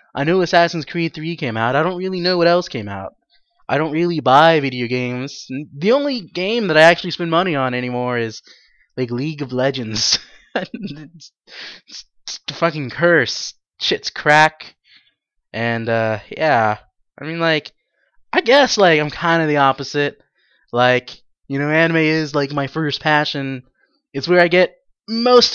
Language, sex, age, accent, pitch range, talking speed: English, male, 20-39, American, 130-170 Hz, 165 wpm